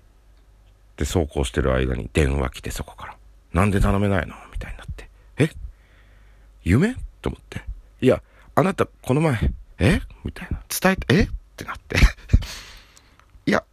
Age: 50-69